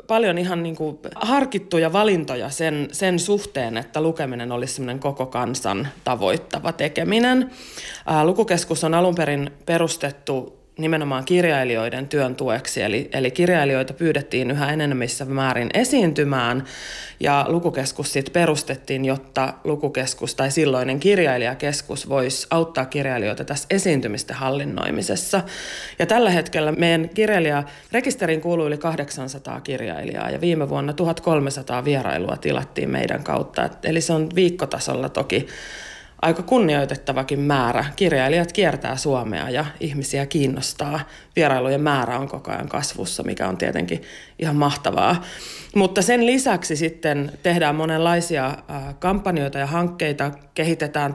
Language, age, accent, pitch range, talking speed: Finnish, 30-49, native, 135-170 Hz, 115 wpm